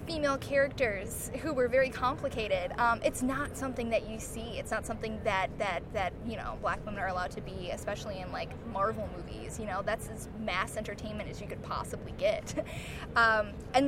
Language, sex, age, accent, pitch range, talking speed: English, female, 10-29, American, 230-295 Hz, 195 wpm